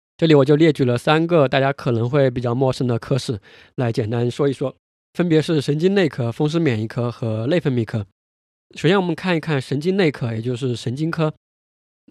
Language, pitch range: Chinese, 125-155 Hz